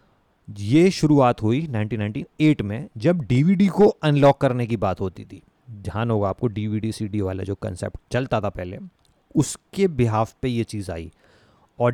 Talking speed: 160 wpm